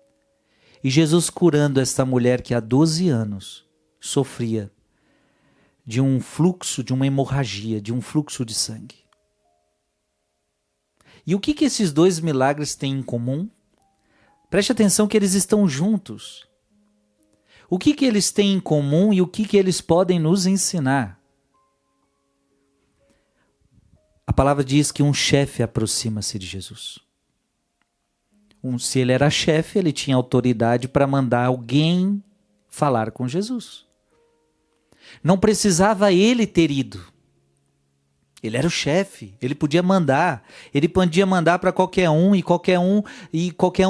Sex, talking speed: male, 135 wpm